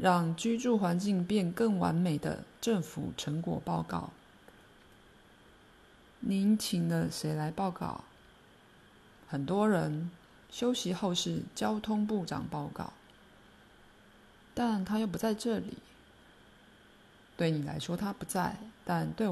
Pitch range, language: 160-210 Hz, Chinese